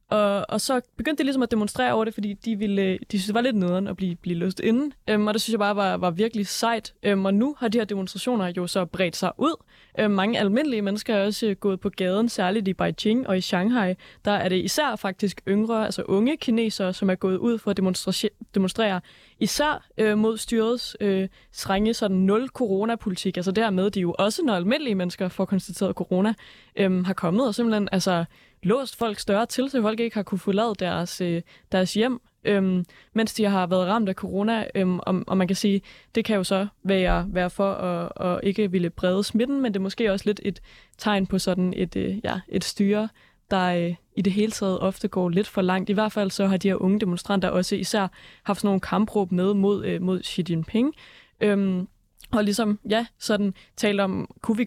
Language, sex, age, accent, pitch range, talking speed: Danish, female, 20-39, native, 185-220 Hz, 220 wpm